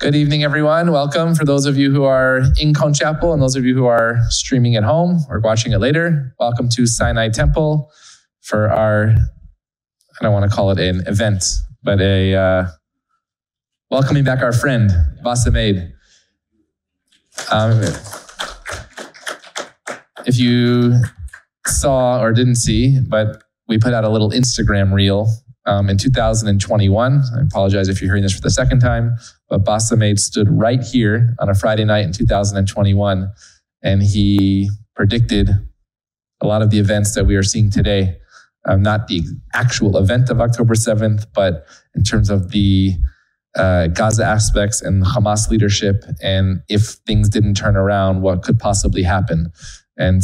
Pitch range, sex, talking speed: 100-120 Hz, male, 155 wpm